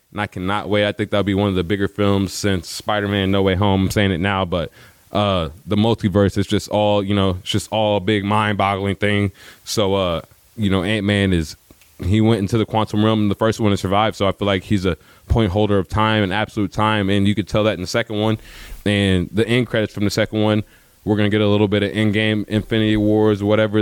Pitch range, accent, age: 100-115 Hz, American, 20-39